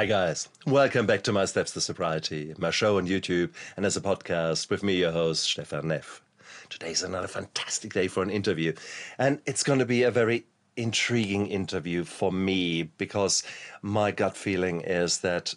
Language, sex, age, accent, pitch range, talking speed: English, male, 50-69, German, 90-110 Hz, 180 wpm